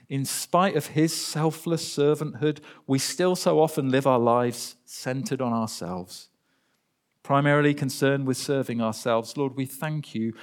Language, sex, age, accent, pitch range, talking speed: English, male, 50-69, British, 110-145 Hz, 145 wpm